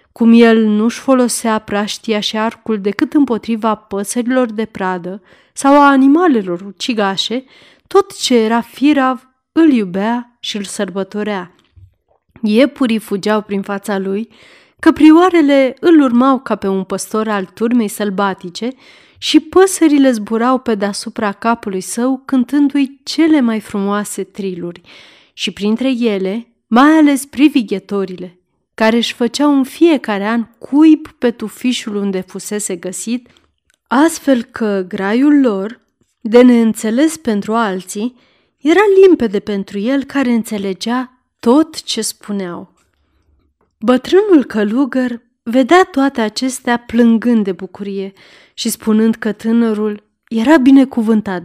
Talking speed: 120 wpm